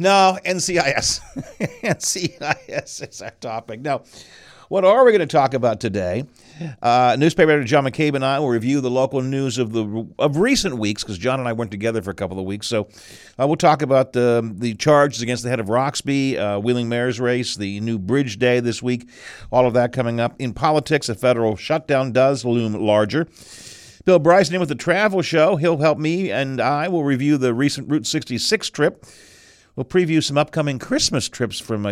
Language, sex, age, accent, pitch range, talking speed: English, male, 50-69, American, 110-155 Hz, 195 wpm